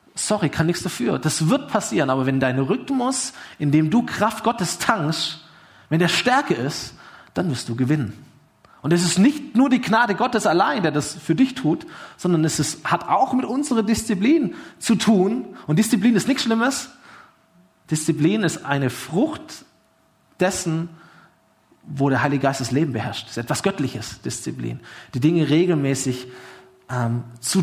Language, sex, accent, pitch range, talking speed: German, male, German, 135-190 Hz, 165 wpm